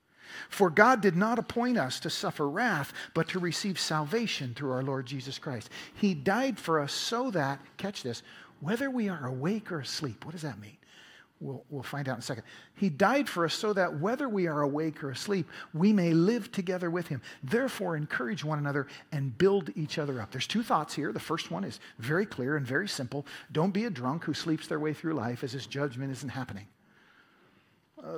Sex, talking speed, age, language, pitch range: male, 210 wpm, 50-69, English, 145-190 Hz